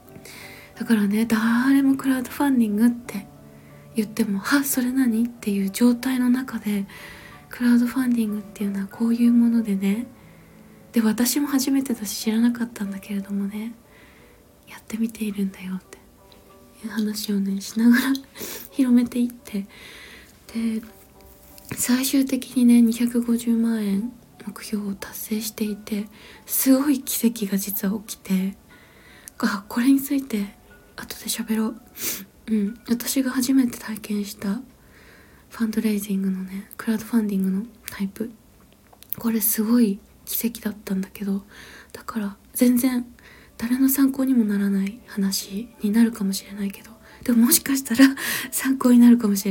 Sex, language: female, Japanese